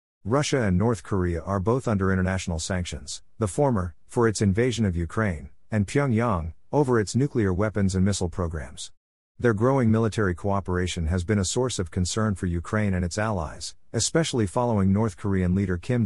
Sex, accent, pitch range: male, American, 90-110 Hz